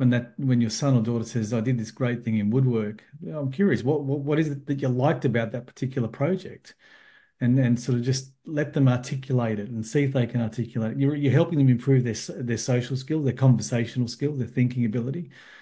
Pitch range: 120-145 Hz